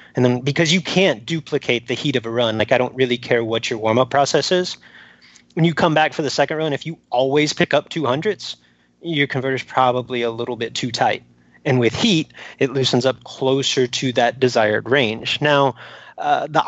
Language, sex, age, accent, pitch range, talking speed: English, male, 30-49, American, 120-150 Hz, 210 wpm